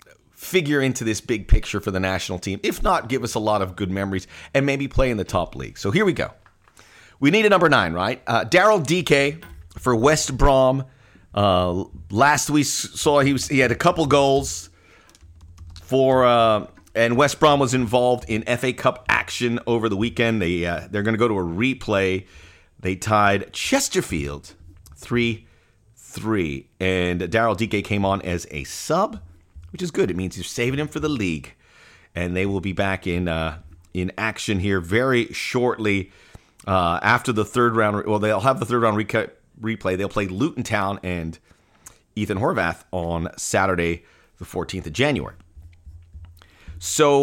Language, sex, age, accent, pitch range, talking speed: English, male, 30-49, American, 90-130 Hz, 180 wpm